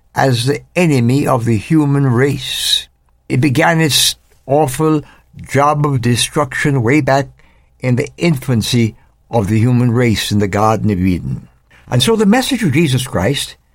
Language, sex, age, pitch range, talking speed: English, male, 60-79, 120-160 Hz, 155 wpm